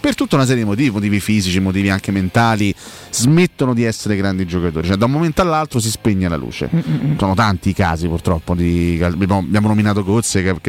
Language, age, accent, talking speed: Italian, 30-49, native, 195 wpm